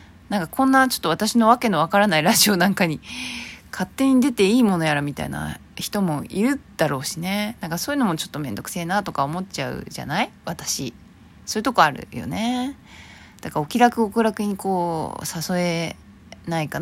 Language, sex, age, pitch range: Japanese, female, 20-39, 155-235 Hz